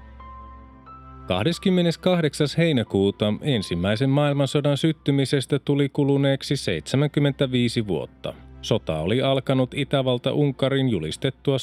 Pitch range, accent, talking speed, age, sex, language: 105-140 Hz, native, 70 wpm, 30-49, male, Finnish